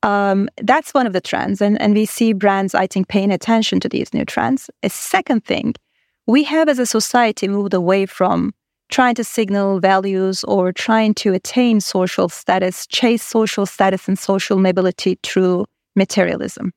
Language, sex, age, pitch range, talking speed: English, female, 30-49, 195-235 Hz, 170 wpm